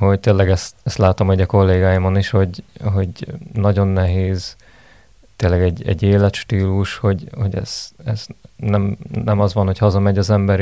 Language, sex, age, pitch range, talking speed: Hungarian, male, 30-49, 95-105 Hz, 165 wpm